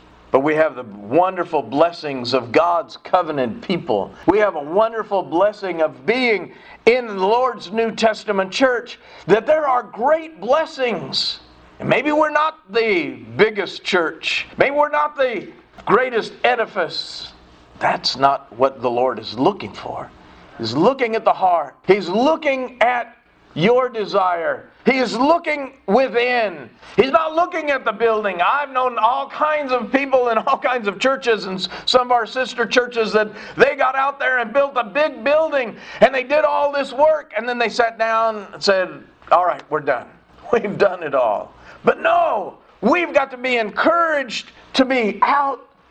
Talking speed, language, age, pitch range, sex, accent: 165 wpm, English, 50-69, 195-280 Hz, male, American